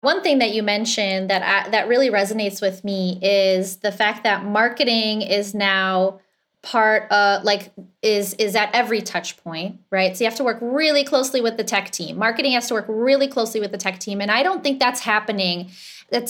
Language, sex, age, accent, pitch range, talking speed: English, female, 20-39, American, 195-255 Hz, 205 wpm